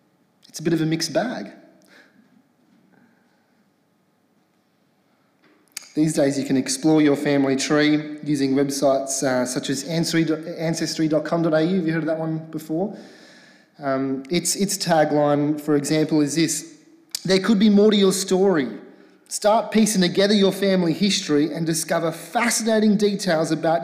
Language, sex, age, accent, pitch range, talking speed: English, male, 30-49, Australian, 145-205 Hz, 135 wpm